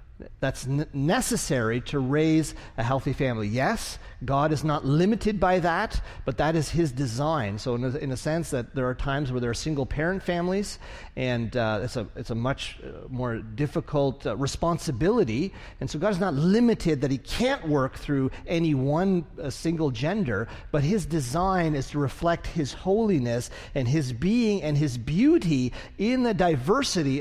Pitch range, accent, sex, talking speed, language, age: 135-180 Hz, American, male, 175 wpm, English, 40-59